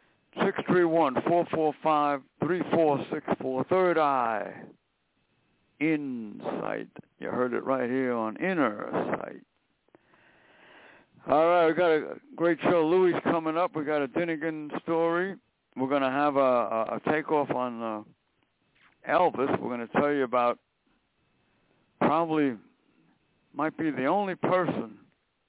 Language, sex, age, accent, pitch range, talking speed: English, male, 60-79, American, 130-170 Hz, 125 wpm